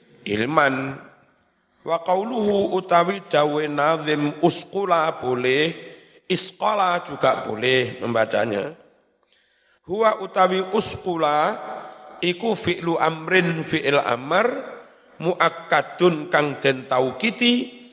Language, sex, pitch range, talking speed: Indonesian, male, 135-180 Hz, 75 wpm